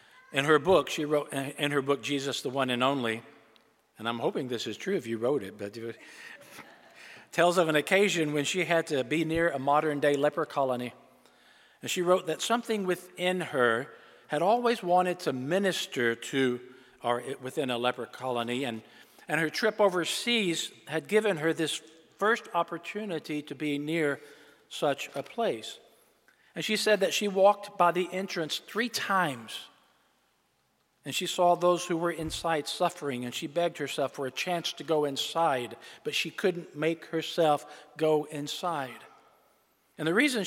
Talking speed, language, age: 165 wpm, English, 50-69